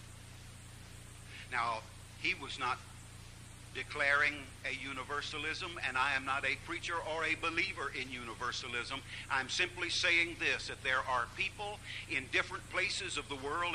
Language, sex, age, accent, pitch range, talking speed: English, male, 60-79, American, 105-115 Hz, 140 wpm